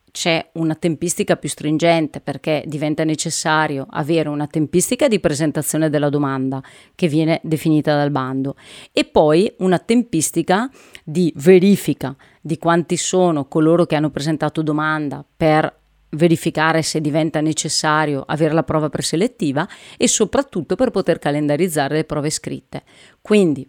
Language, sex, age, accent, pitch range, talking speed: Italian, female, 30-49, native, 155-175 Hz, 130 wpm